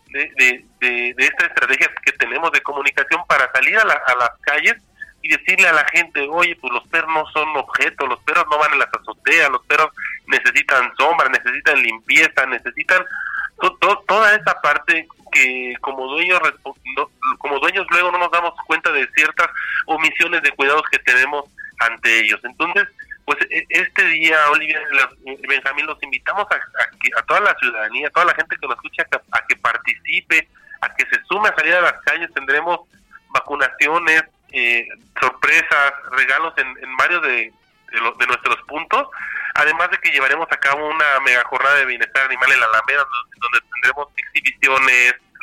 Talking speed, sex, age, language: 175 wpm, male, 40-59, Spanish